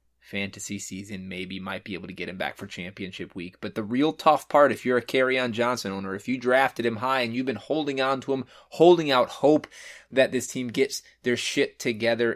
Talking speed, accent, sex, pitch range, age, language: 230 wpm, American, male, 100-130 Hz, 20-39, English